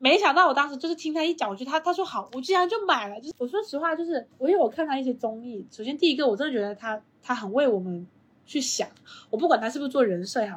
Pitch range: 205-300 Hz